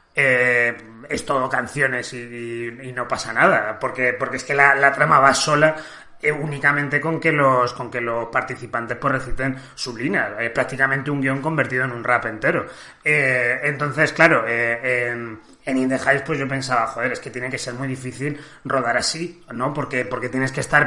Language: Spanish